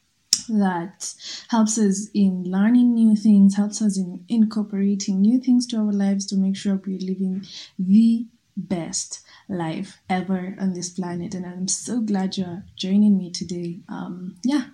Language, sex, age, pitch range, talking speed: English, female, 20-39, 190-225 Hz, 155 wpm